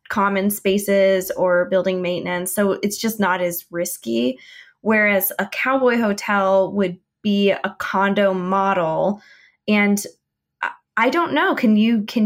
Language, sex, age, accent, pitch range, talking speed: English, female, 20-39, American, 190-210 Hz, 130 wpm